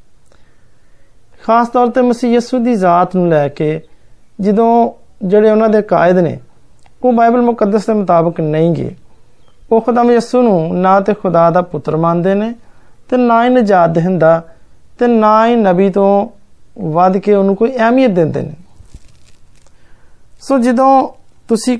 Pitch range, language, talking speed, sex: 165-225 Hz, Hindi, 125 wpm, male